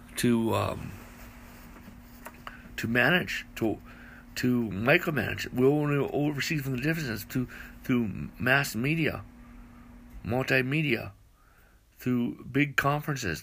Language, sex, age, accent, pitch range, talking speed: English, male, 60-79, American, 110-140 Hz, 105 wpm